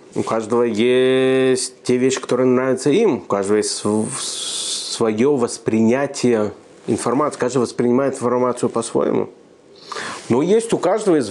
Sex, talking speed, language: male, 120 wpm, Russian